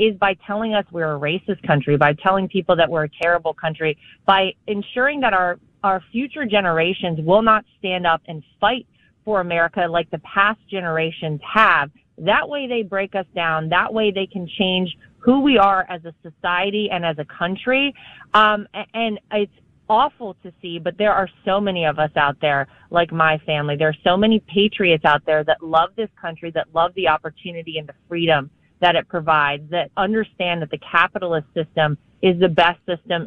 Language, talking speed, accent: English, 195 wpm, American